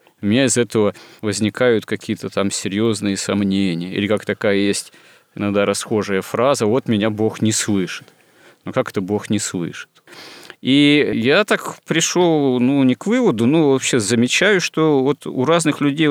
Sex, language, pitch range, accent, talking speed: male, Russian, 100-125 Hz, native, 160 wpm